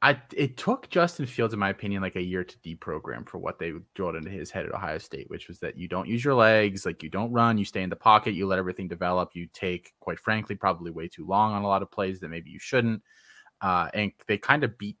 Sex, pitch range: male, 90-110 Hz